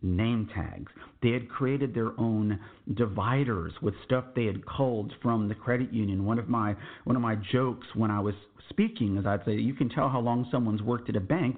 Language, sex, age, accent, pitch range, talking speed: English, male, 50-69, American, 105-130 Hz, 210 wpm